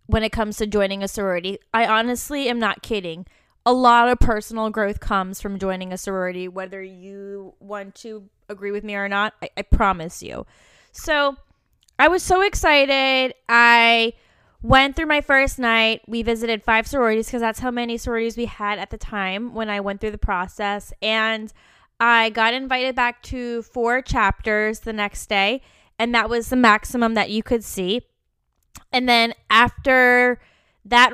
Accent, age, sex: American, 10-29, female